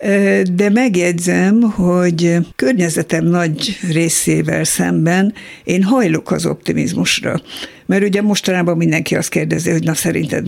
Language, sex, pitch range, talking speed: Hungarian, female, 160-190 Hz, 115 wpm